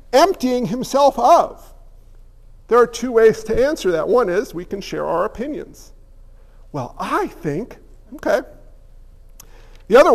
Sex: male